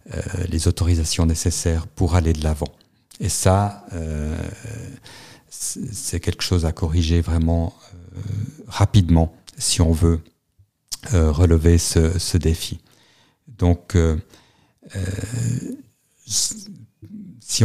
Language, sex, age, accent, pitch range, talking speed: French, male, 50-69, French, 85-105 Hz, 100 wpm